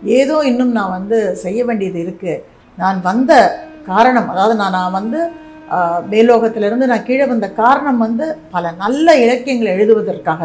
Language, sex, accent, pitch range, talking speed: Tamil, female, native, 200-265 Hz, 140 wpm